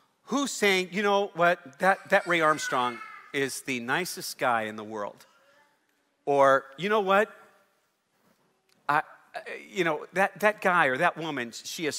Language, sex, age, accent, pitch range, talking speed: English, male, 40-59, American, 150-210 Hz, 155 wpm